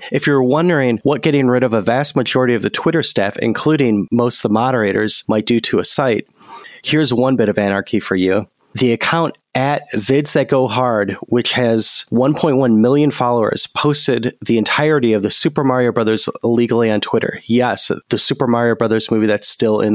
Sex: male